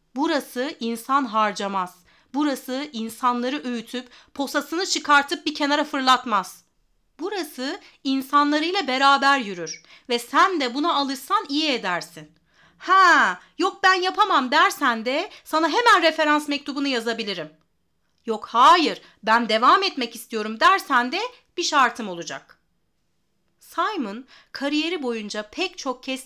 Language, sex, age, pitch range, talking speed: Turkish, female, 40-59, 210-295 Hz, 115 wpm